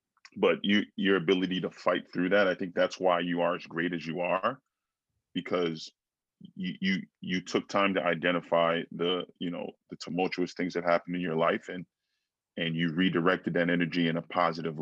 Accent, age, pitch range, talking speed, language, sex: American, 20-39, 85-95 Hz, 190 wpm, English, male